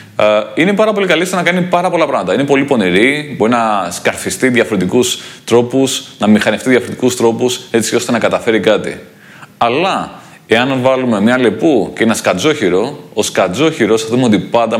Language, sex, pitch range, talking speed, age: Greek, male, 115-145 Hz, 165 wpm, 30-49